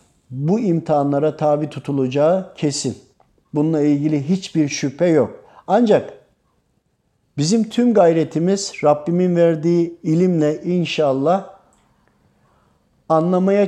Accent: native